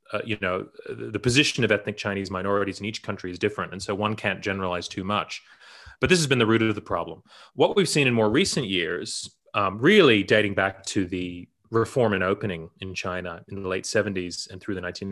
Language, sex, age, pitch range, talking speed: English, male, 30-49, 95-120 Hz, 220 wpm